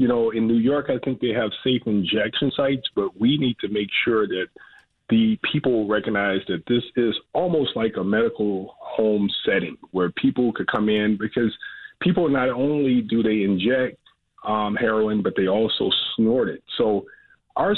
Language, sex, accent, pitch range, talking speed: English, male, American, 105-150 Hz, 175 wpm